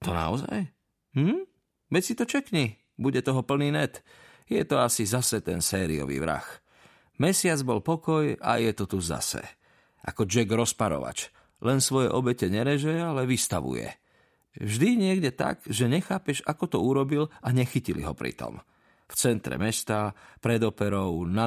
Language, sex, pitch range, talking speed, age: Slovak, male, 95-140 Hz, 150 wpm, 40-59